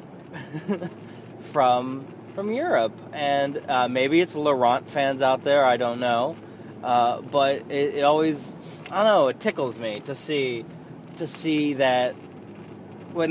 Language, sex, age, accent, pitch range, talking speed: English, male, 20-39, American, 120-165 Hz, 130 wpm